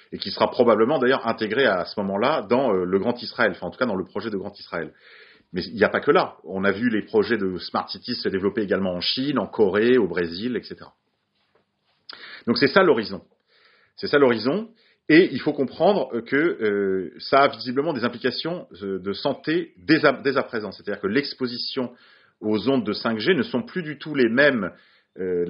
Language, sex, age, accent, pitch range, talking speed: French, male, 40-59, French, 100-135 Hz, 200 wpm